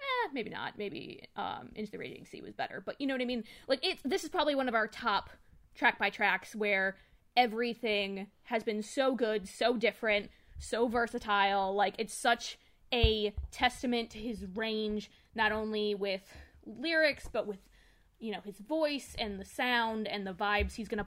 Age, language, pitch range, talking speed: 20-39, English, 205-255 Hz, 180 wpm